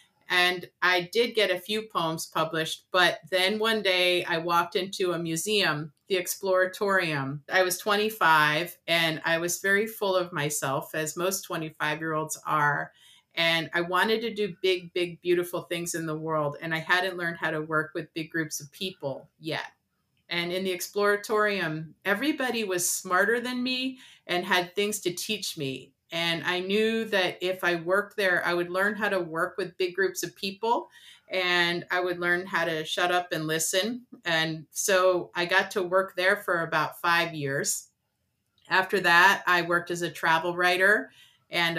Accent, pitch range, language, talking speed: American, 165-200 Hz, English, 175 wpm